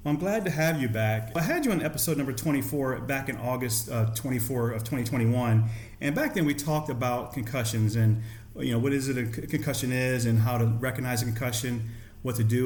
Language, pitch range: English, 110-135 Hz